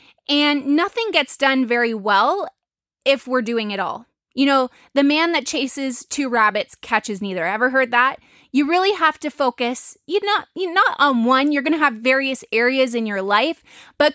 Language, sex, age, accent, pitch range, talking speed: English, female, 20-39, American, 230-290 Hz, 190 wpm